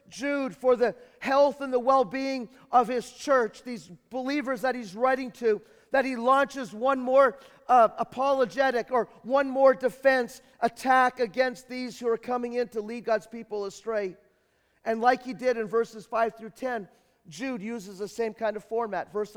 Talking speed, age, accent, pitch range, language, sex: 175 wpm, 40-59, American, 210-250 Hz, English, male